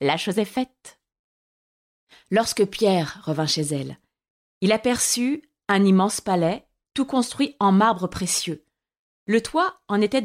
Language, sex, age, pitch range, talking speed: French, female, 30-49, 175-240 Hz, 135 wpm